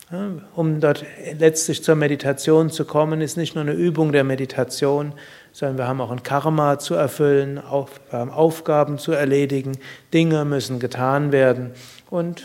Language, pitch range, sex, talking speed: German, 135-160 Hz, male, 150 wpm